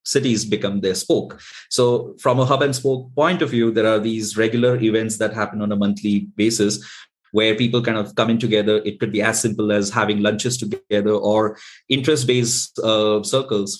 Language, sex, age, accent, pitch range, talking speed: English, male, 30-49, Indian, 100-120 Hz, 185 wpm